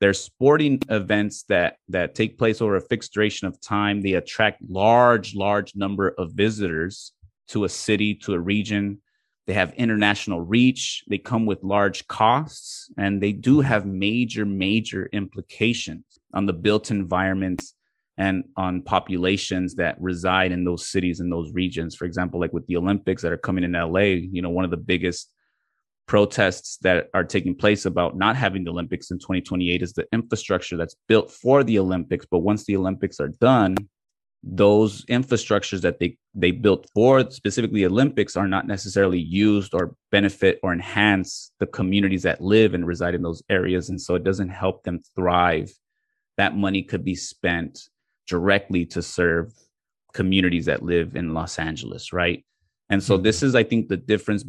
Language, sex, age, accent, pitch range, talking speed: English, male, 30-49, American, 90-105 Hz, 170 wpm